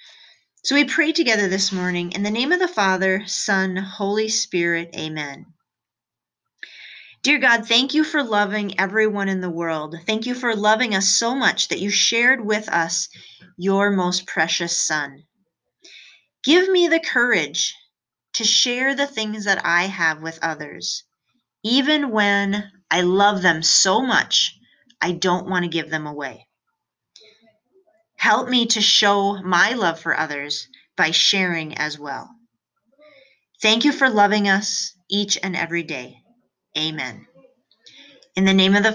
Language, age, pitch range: English, 30-49, 170-230 Hz